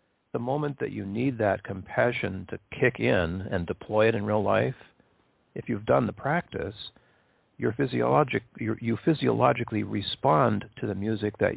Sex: male